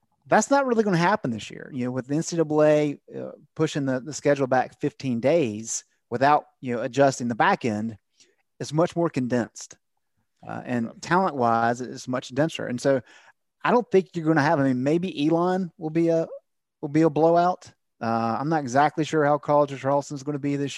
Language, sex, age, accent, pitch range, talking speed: English, male, 30-49, American, 125-160 Hz, 210 wpm